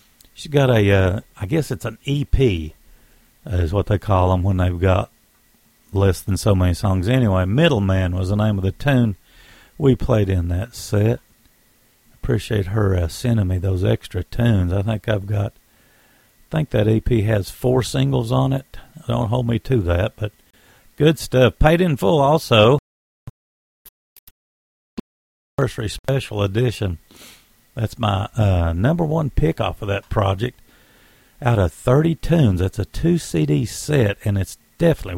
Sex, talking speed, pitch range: male, 160 wpm, 95-130 Hz